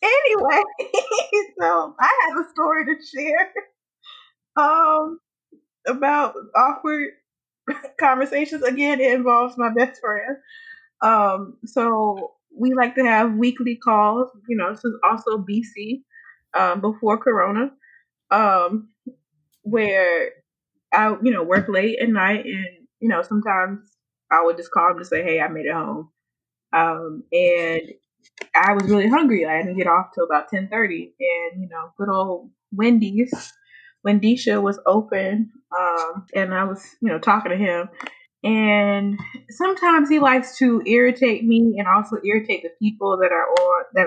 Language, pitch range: English, 190-260 Hz